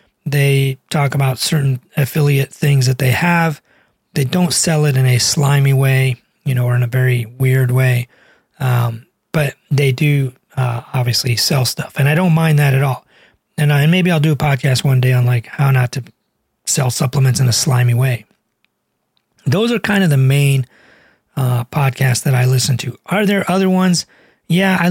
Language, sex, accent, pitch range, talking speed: English, male, American, 130-155 Hz, 185 wpm